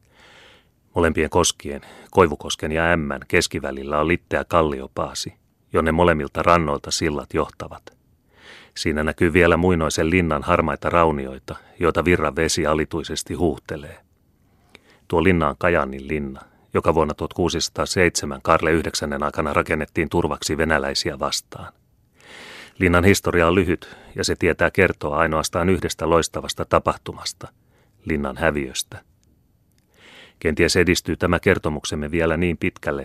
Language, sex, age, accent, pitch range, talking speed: Finnish, male, 30-49, native, 75-90 Hz, 115 wpm